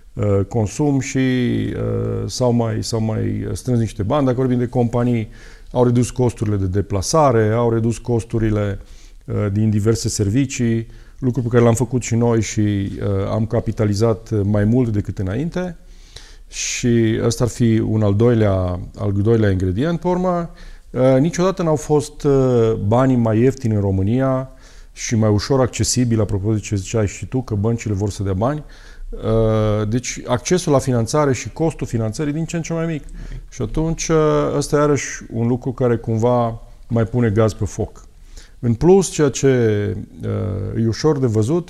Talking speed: 165 wpm